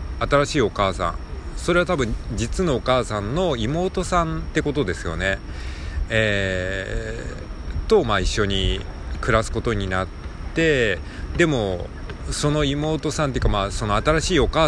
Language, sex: Japanese, male